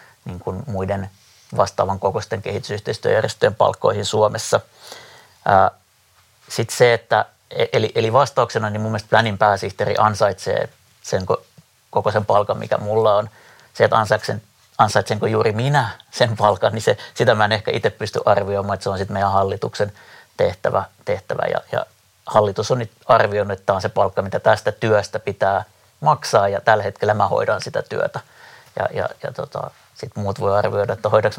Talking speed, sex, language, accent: 160 wpm, male, Finnish, native